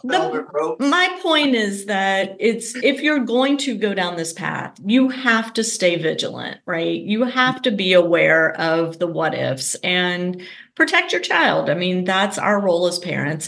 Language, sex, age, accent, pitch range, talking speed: English, female, 30-49, American, 175-225 Hz, 180 wpm